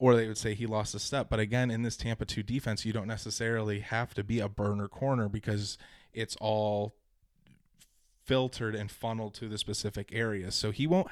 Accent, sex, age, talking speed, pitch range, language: American, male, 20-39, 200 wpm, 105-120 Hz, English